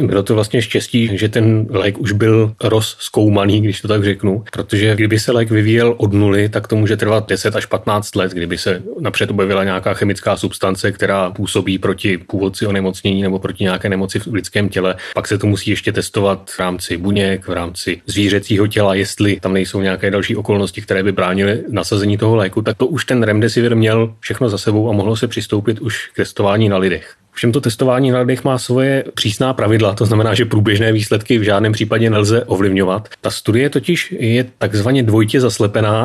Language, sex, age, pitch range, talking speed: Czech, male, 30-49, 100-120 Hz, 195 wpm